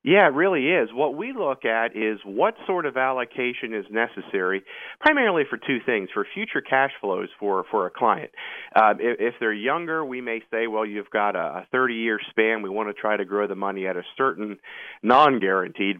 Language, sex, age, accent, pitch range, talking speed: English, male, 40-59, American, 100-115 Hz, 205 wpm